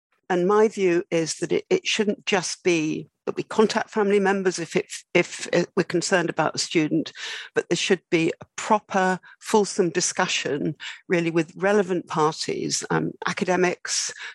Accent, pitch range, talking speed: British, 160-195 Hz, 150 wpm